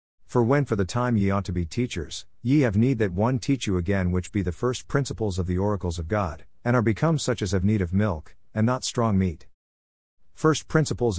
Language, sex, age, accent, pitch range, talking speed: English, male, 50-69, American, 90-115 Hz, 230 wpm